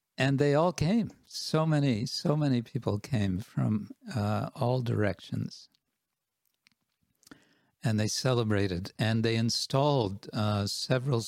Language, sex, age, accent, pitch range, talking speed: English, male, 60-79, American, 105-130 Hz, 115 wpm